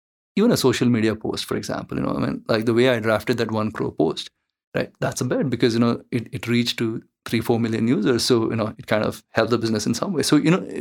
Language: English